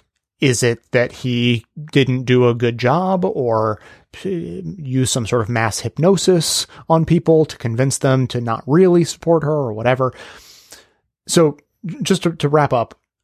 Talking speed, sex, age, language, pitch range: 160 wpm, male, 30-49, English, 120-155 Hz